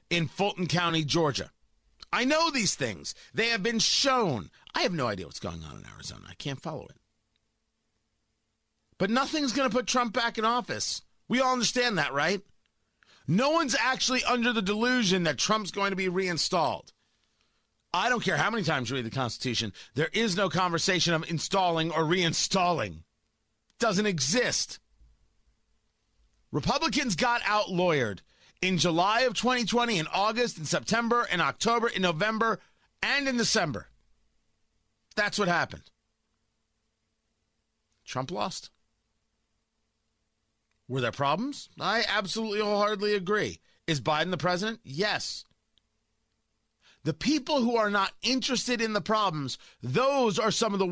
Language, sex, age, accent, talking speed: English, male, 40-59, American, 145 wpm